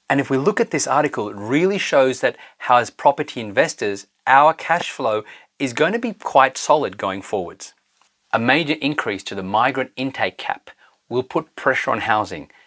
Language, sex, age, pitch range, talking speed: English, male, 30-49, 115-145 Hz, 185 wpm